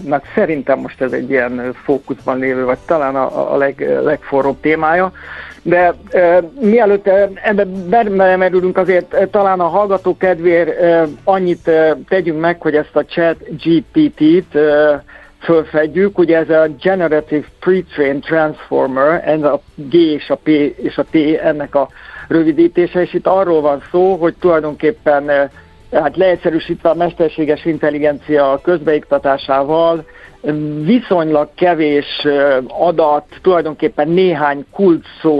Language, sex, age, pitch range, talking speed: Hungarian, male, 60-79, 145-175 Hz, 130 wpm